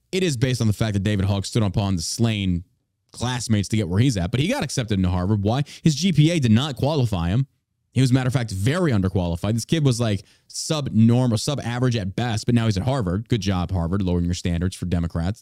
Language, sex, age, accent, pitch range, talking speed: English, male, 30-49, American, 105-145 Hz, 235 wpm